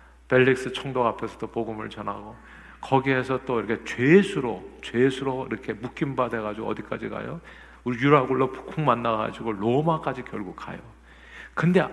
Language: Korean